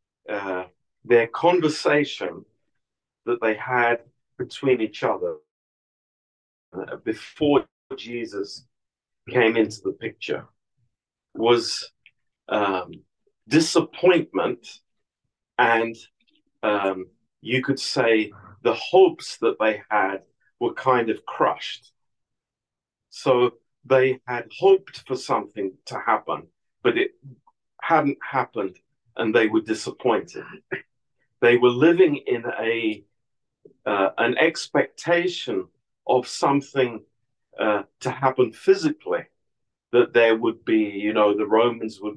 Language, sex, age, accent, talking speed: Romanian, male, 40-59, British, 100 wpm